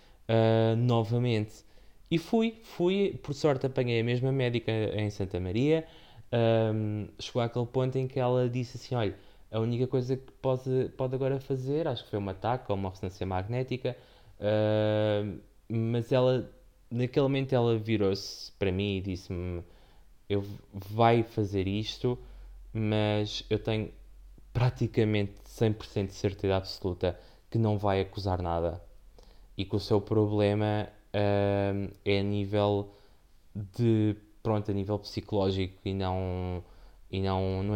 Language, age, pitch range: Portuguese, 20-39, 100-120 Hz